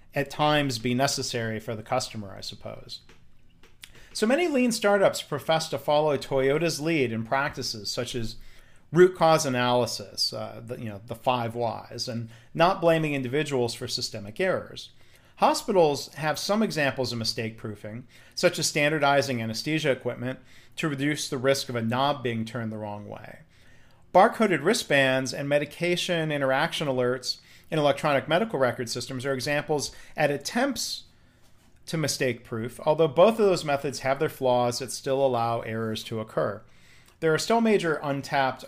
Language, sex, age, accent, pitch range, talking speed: English, male, 40-59, American, 120-155 Hz, 155 wpm